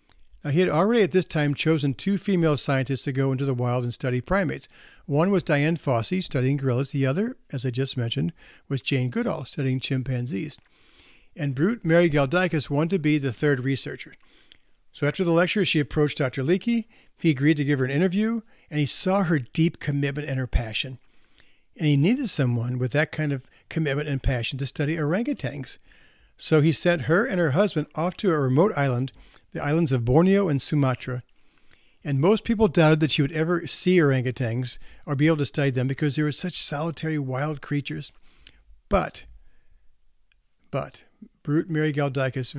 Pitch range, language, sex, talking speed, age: 135-165 Hz, English, male, 180 wpm, 60-79